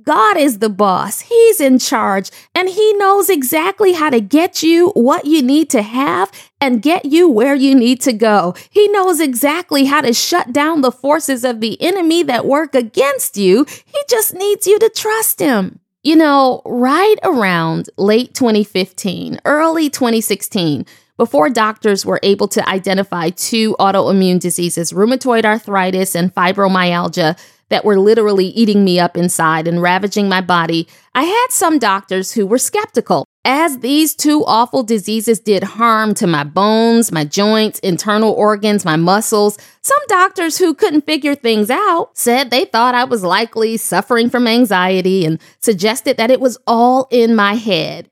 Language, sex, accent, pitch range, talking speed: English, female, American, 200-290 Hz, 165 wpm